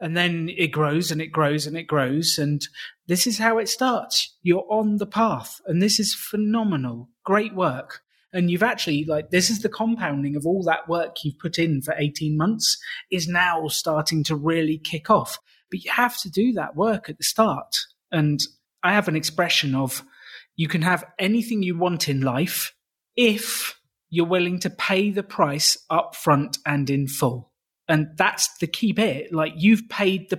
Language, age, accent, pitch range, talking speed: English, 30-49, British, 150-185 Hz, 190 wpm